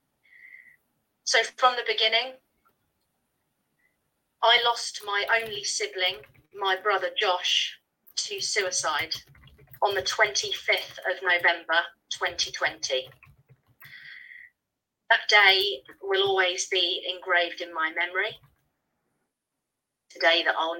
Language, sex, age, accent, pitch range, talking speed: English, female, 30-49, British, 170-225 Hz, 95 wpm